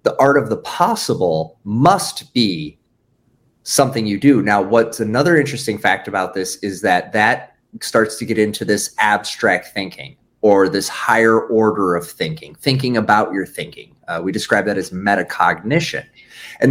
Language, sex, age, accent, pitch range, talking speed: English, male, 30-49, American, 105-135 Hz, 160 wpm